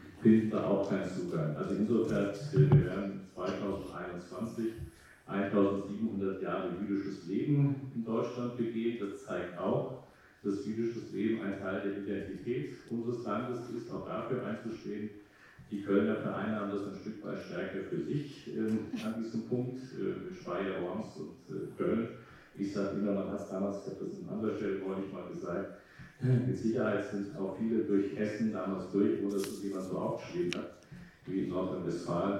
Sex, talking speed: male, 155 wpm